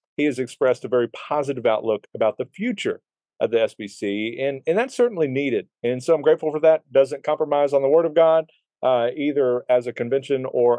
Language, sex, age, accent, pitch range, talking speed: English, male, 40-59, American, 110-155 Hz, 205 wpm